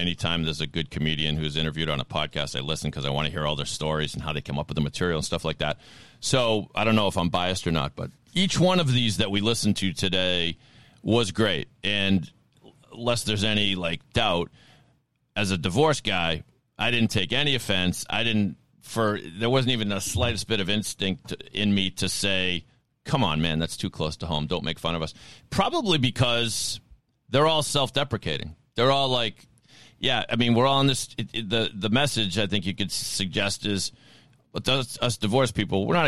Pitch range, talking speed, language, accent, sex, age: 90-120 Hz, 220 wpm, English, American, male, 40-59